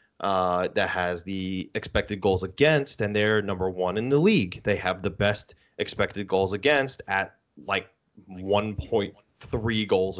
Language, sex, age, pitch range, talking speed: English, male, 20-39, 95-160 Hz, 145 wpm